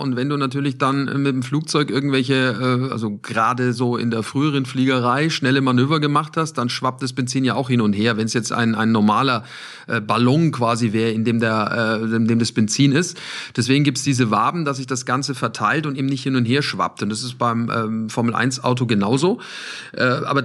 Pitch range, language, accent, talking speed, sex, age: 125-150 Hz, German, German, 220 wpm, male, 40-59